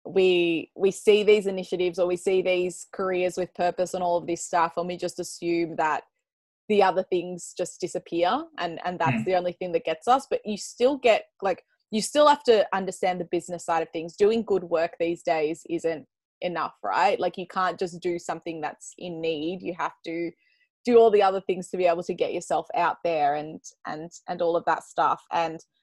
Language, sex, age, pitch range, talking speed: English, female, 20-39, 165-190 Hz, 215 wpm